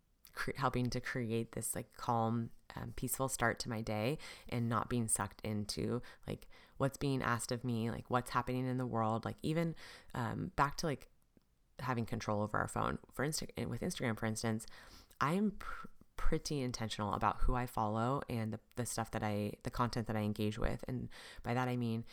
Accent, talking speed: American, 195 wpm